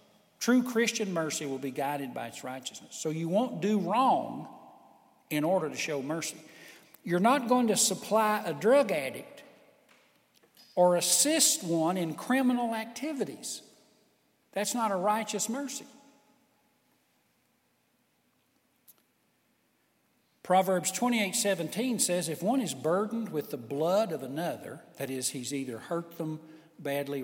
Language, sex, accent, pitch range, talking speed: English, male, American, 170-245 Hz, 130 wpm